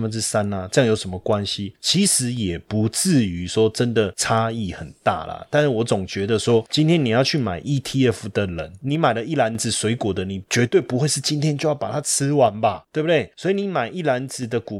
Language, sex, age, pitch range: Chinese, male, 20-39, 105-135 Hz